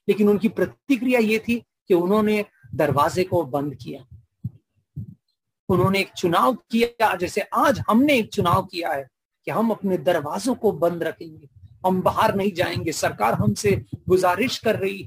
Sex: male